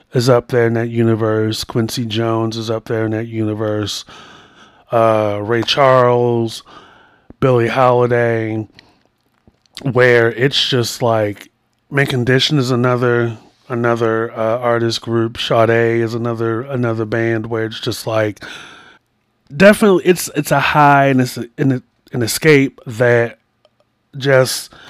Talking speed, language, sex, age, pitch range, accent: 130 wpm, English, male, 30-49, 115-130 Hz, American